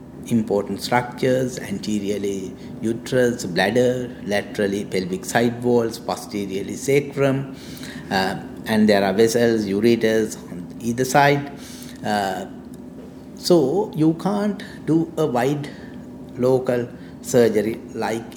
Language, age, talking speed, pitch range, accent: English, 60-79, 100 wpm, 110-140 Hz, Indian